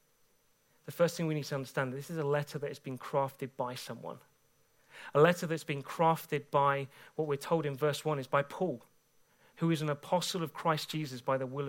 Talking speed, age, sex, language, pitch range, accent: 215 wpm, 30-49, male, English, 160-230 Hz, British